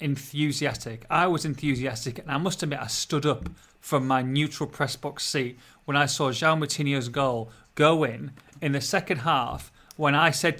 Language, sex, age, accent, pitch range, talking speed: English, male, 30-49, British, 130-170 Hz, 180 wpm